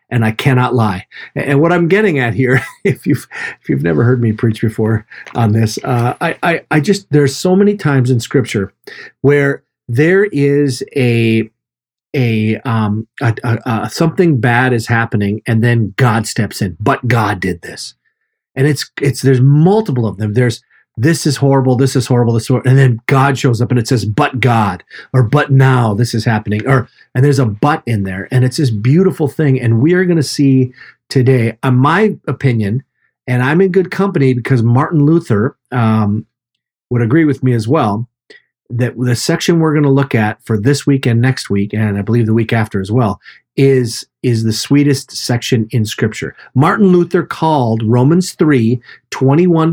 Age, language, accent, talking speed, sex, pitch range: 40-59, English, American, 195 wpm, male, 115-145 Hz